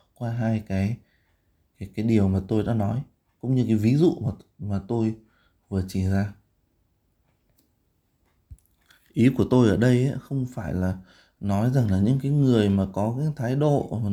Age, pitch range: 20-39, 100-130 Hz